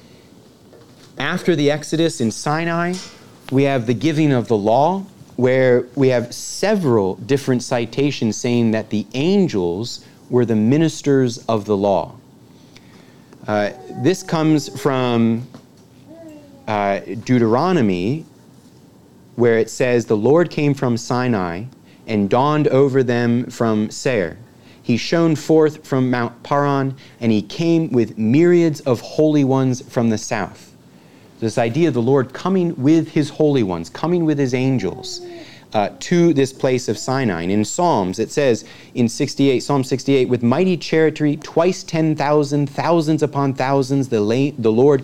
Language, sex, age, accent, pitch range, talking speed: English, male, 30-49, American, 115-150 Hz, 140 wpm